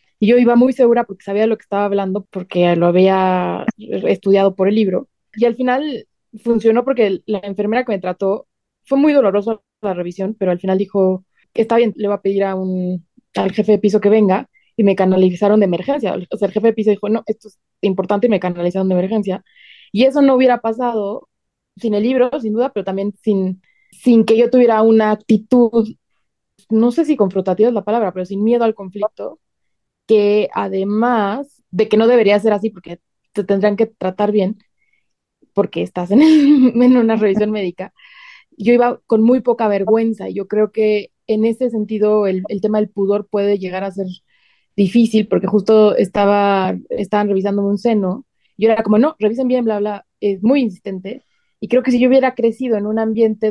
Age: 20-39